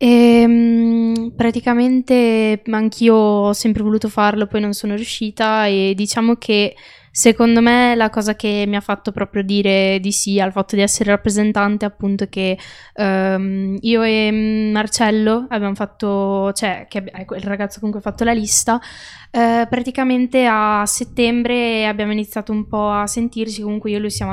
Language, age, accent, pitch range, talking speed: Italian, 20-39, native, 195-220 Hz, 150 wpm